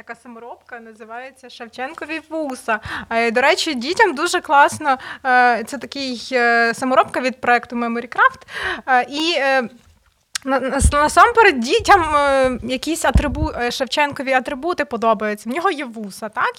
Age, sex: 20-39, female